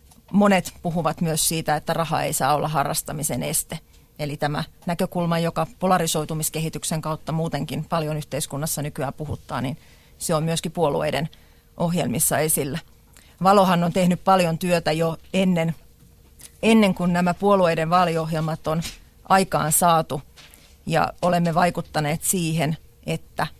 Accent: native